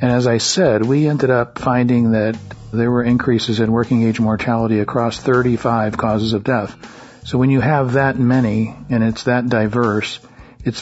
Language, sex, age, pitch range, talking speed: English, male, 50-69, 110-125 Hz, 170 wpm